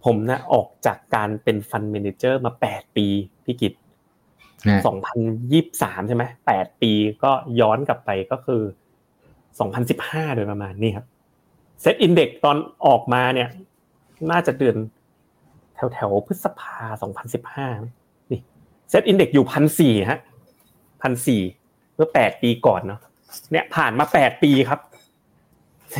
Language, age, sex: Thai, 30-49, male